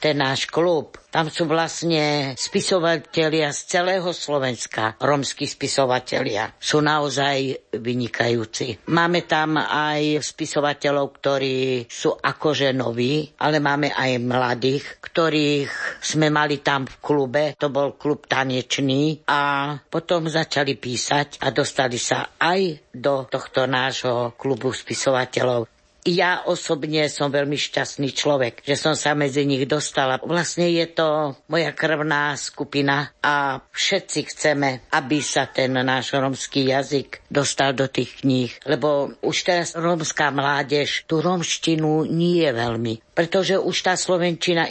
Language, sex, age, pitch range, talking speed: Slovak, female, 60-79, 135-155 Hz, 130 wpm